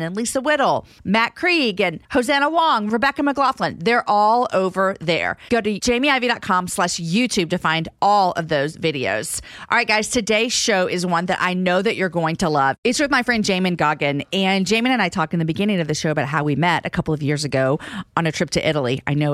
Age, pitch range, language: 40-59, 155-210 Hz, English